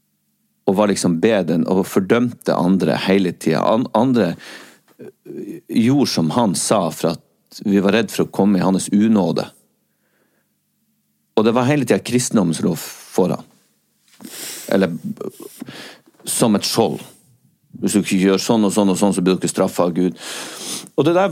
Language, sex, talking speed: English, male, 140 wpm